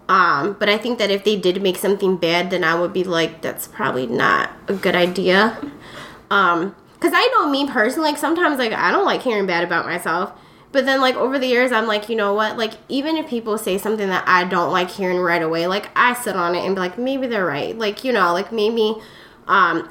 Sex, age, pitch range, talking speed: female, 20-39, 190-255 Hz, 240 wpm